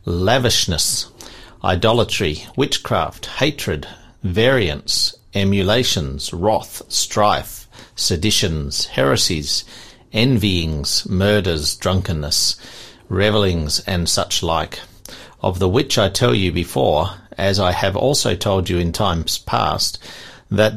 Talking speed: 100 wpm